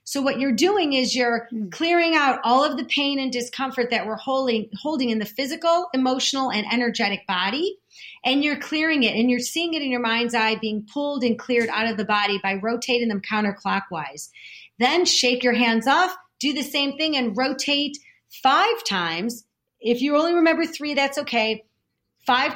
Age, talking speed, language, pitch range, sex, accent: 40-59, 185 wpm, English, 230-290 Hz, female, American